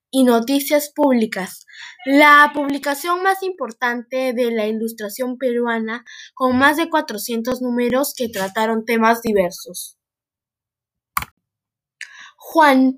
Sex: female